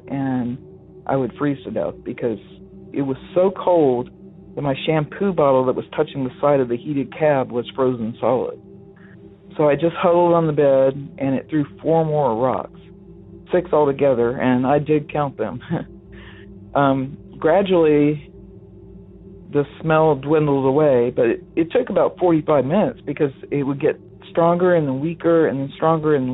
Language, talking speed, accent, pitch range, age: English, 160 wpm, American, 135-160 Hz, 50-69